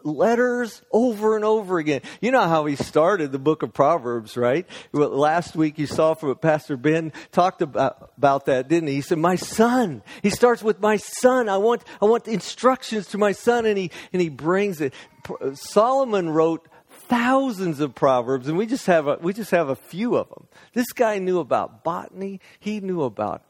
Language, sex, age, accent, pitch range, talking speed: English, male, 50-69, American, 145-205 Hz, 200 wpm